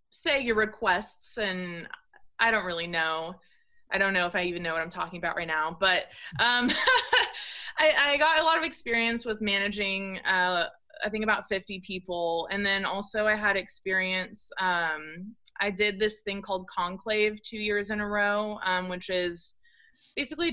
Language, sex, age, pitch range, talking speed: English, female, 20-39, 185-215 Hz, 175 wpm